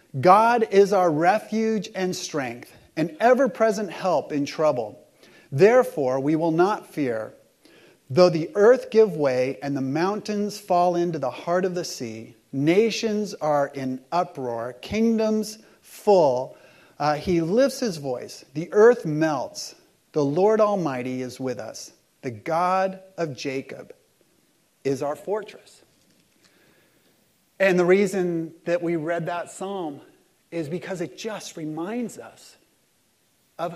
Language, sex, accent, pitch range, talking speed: English, male, American, 160-220 Hz, 130 wpm